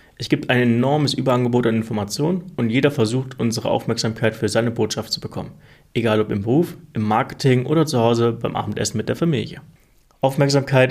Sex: male